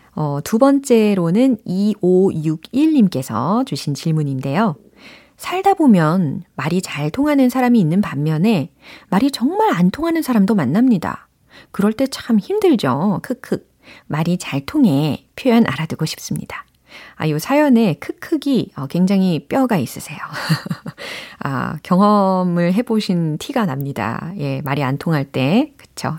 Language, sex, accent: Korean, female, native